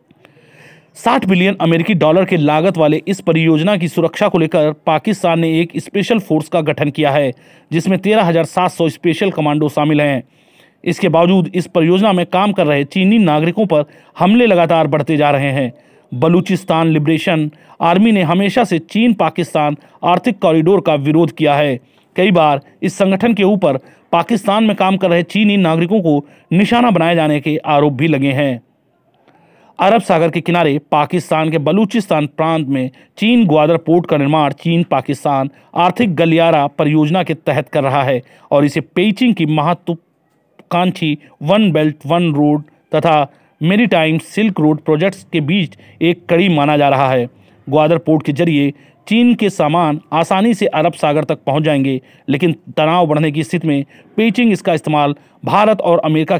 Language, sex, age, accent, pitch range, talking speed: Hindi, male, 40-59, native, 150-185 Hz, 165 wpm